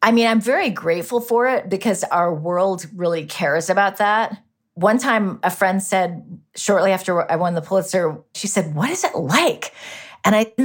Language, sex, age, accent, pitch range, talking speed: English, female, 40-59, American, 180-220 Hz, 185 wpm